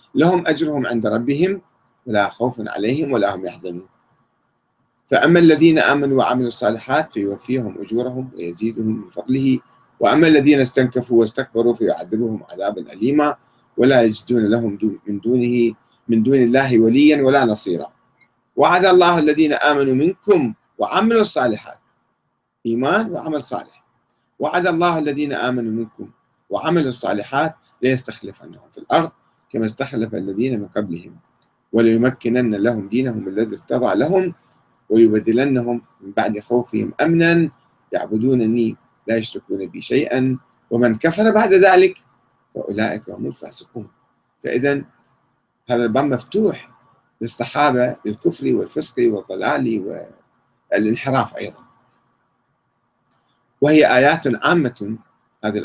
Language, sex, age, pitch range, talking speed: Arabic, male, 30-49, 110-145 Hz, 110 wpm